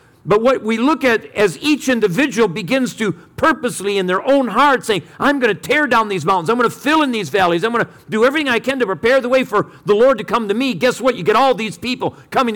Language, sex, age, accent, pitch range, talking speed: English, male, 50-69, American, 170-250 Hz, 270 wpm